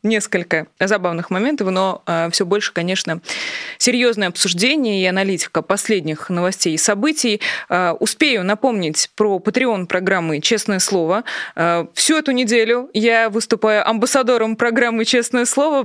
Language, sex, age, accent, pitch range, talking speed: Russian, female, 20-39, native, 175-230 Hz, 115 wpm